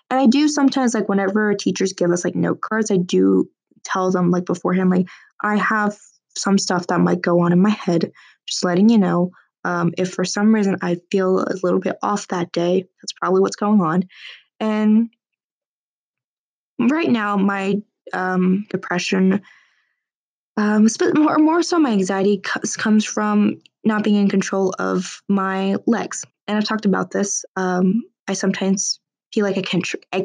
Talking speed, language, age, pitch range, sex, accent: 170 wpm, English, 10-29, 185-215 Hz, female, American